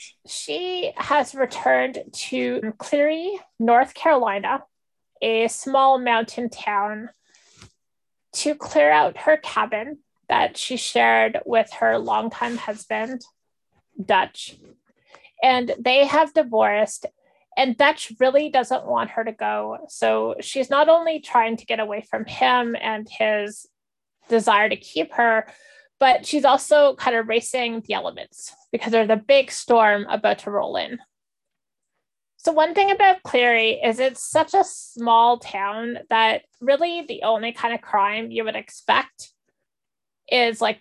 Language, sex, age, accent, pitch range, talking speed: English, female, 30-49, American, 220-280 Hz, 135 wpm